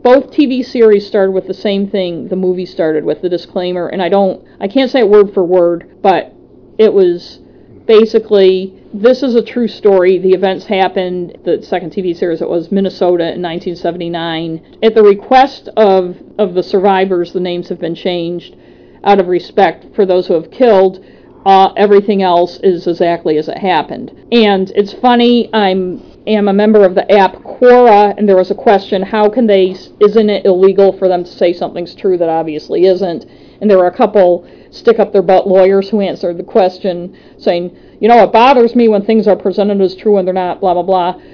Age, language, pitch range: 50-69, English, 180-220 Hz